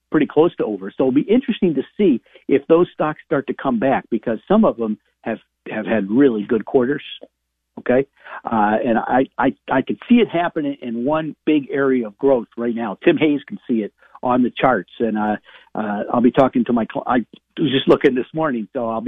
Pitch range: 110-155 Hz